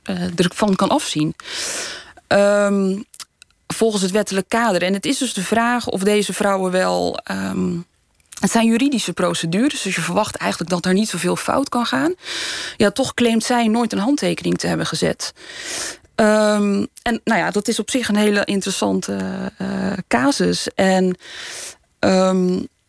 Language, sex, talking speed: Dutch, female, 155 wpm